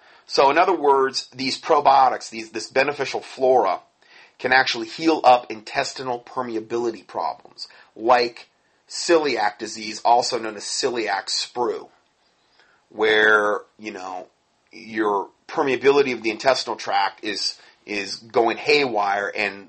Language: English